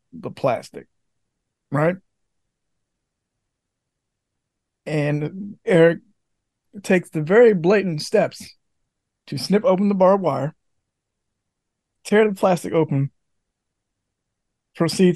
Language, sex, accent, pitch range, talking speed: English, male, American, 145-185 Hz, 85 wpm